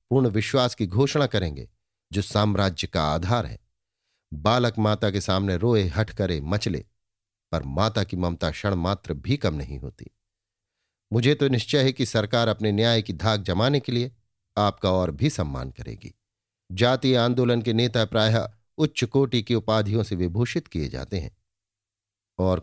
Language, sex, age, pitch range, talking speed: Hindi, male, 50-69, 95-120 Hz, 160 wpm